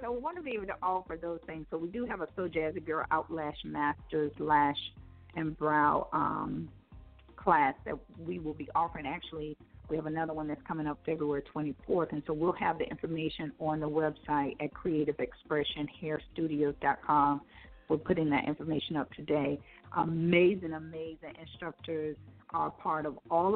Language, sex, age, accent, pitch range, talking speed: English, female, 40-59, American, 150-170 Hz, 160 wpm